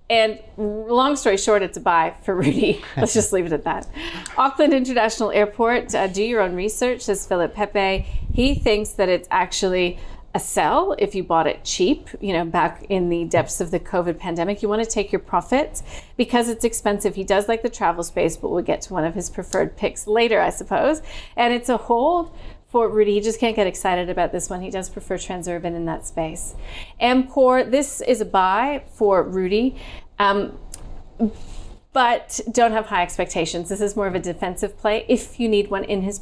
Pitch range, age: 180-230 Hz, 30-49